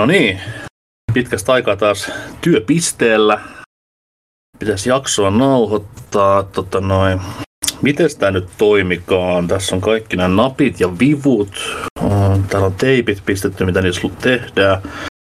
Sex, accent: male, native